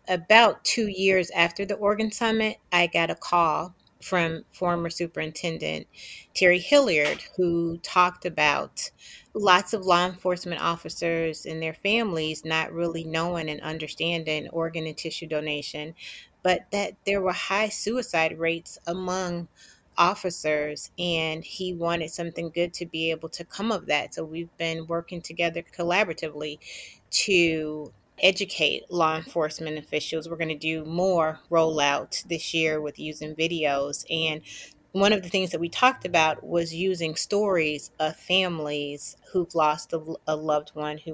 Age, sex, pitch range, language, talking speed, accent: 30-49, female, 155-180 Hz, English, 145 wpm, American